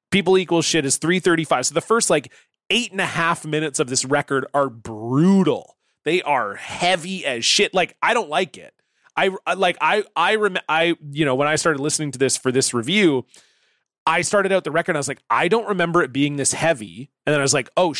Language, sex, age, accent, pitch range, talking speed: English, male, 30-49, American, 130-170 Hz, 225 wpm